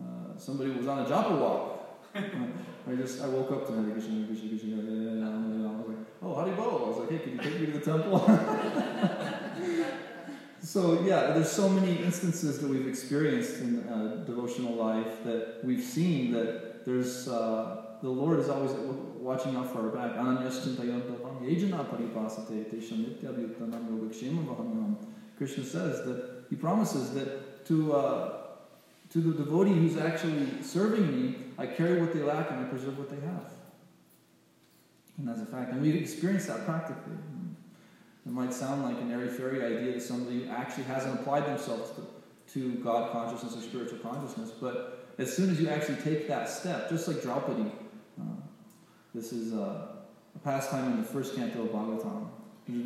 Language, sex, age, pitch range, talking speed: English, male, 20-39, 120-175 Hz, 155 wpm